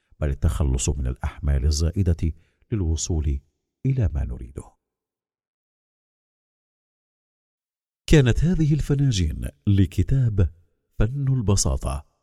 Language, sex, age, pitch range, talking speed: Arabic, male, 50-69, 80-120 Hz, 70 wpm